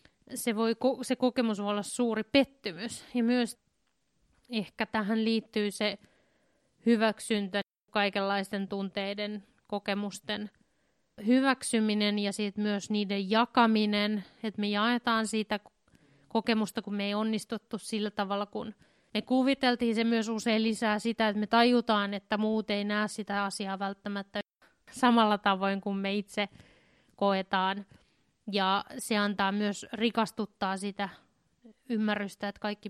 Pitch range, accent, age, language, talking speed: 205-230 Hz, native, 20-39, Finnish, 120 wpm